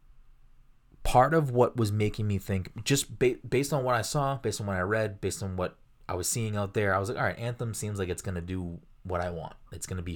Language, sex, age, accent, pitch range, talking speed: English, male, 20-39, American, 90-115 Hz, 255 wpm